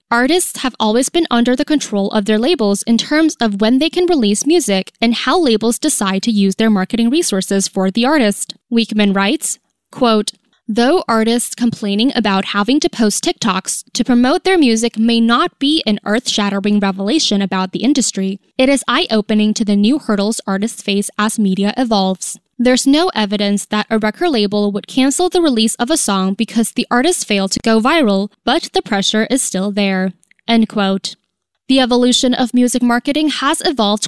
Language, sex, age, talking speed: English, female, 10-29, 180 wpm